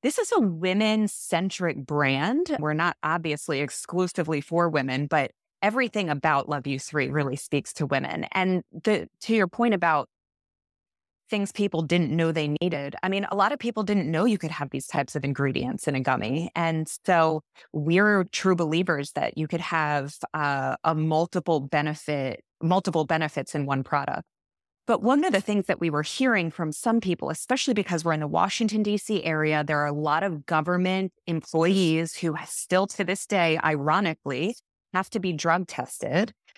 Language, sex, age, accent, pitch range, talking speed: English, female, 20-39, American, 150-185 Hz, 175 wpm